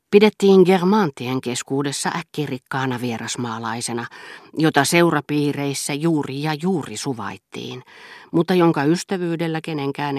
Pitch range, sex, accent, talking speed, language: 130-165 Hz, female, native, 95 wpm, Finnish